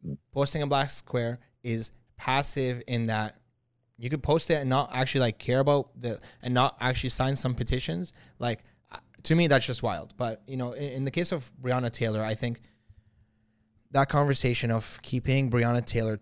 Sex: male